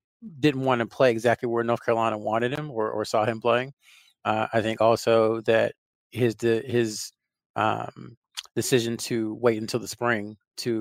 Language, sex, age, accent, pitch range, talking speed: English, male, 30-49, American, 110-120 Hz, 170 wpm